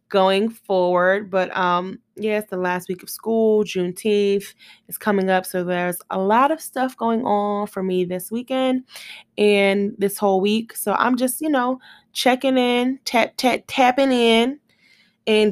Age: 20-39